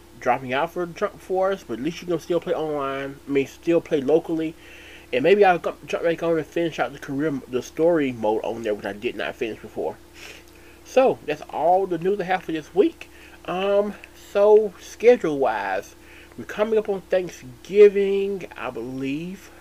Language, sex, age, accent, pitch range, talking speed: English, male, 30-49, American, 135-190 Hz, 185 wpm